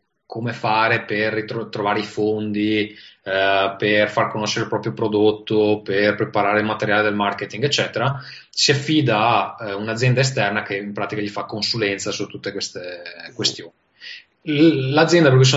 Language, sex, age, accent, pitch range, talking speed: Italian, male, 20-39, native, 105-140 Hz, 160 wpm